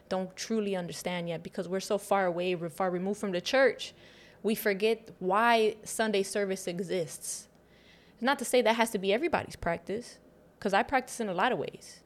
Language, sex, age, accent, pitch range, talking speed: English, female, 20-39, American, 185-225 Hz, 185 wpm